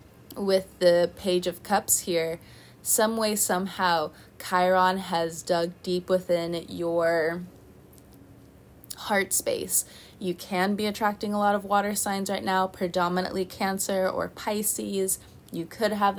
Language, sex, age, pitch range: English, female, 20-39, 165-195 Hz